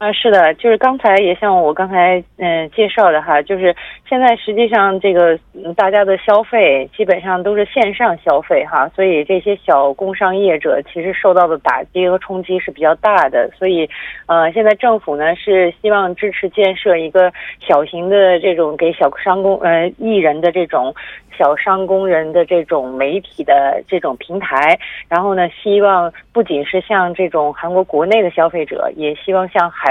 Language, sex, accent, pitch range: Korean, female, Chinese, 160-205 Hz